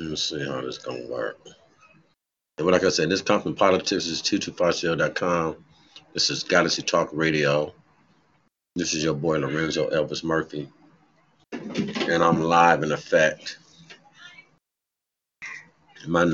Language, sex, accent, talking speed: English, male, American, 135 wpm